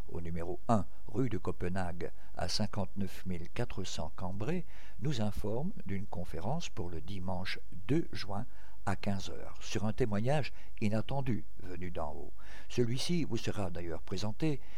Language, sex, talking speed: French, male, 135 wpm